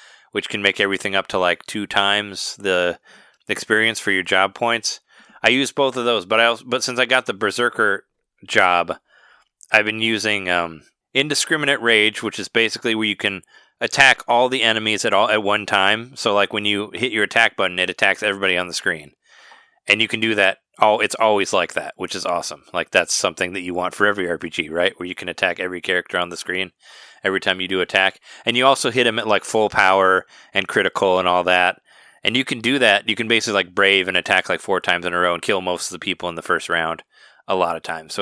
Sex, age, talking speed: male, 20-39, 235 wpm